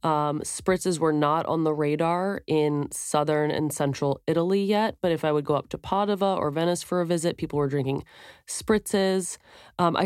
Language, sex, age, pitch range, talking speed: English, female, 20-39, 150-185 Hz, 190 wpm